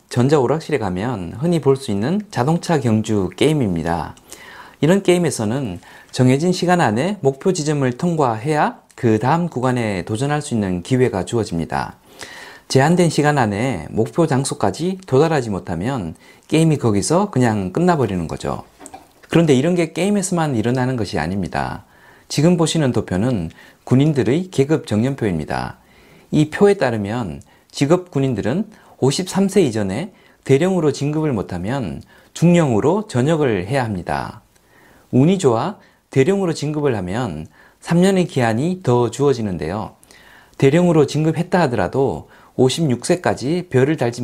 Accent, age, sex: native, 40-59, male